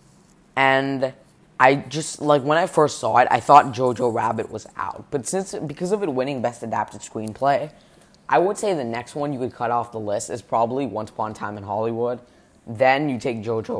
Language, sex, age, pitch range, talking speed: English, female, 10-29, 110-145 Hz, 210 wpm